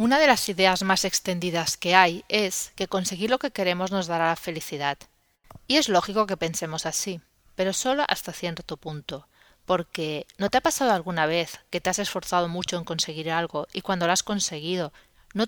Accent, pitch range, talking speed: Spanish, 165-210 Hz, 195 wpm